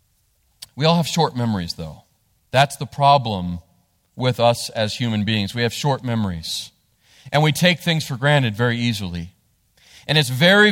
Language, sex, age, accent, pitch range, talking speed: English, male, 40-59, American, 135-180 Hz, 160 wpm